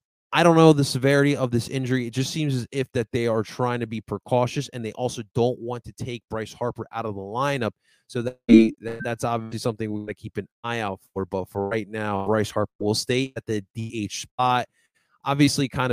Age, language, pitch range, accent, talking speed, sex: 20-39, English, 105-135 Hz, American, 225 wpm, male